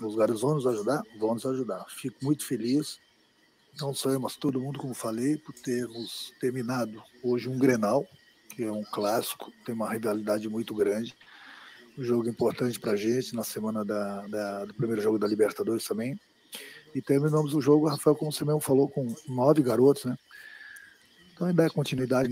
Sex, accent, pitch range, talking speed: male, Brazilian, 105-140 Hz, 175 wpm